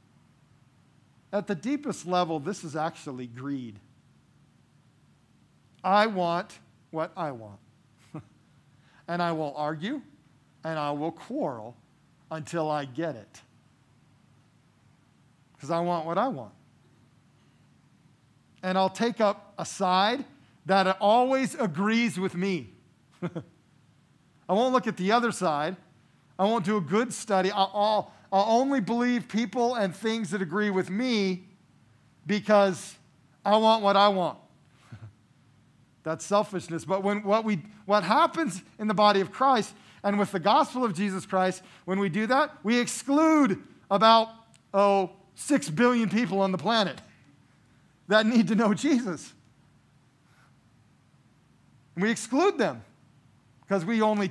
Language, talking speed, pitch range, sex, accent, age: English, 130 wpm, 145-210 Hz, male, American, 50-69